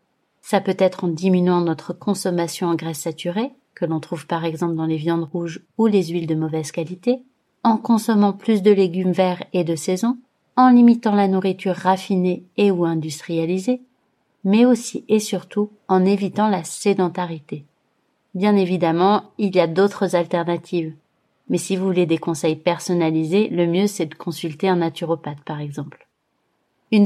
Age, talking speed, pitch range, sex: 30-49, 165 wpm, 175-215 Hz, female